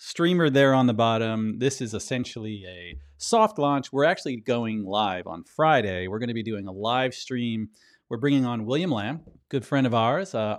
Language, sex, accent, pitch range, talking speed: English, male, American, 110-135 Hz, 200 wpm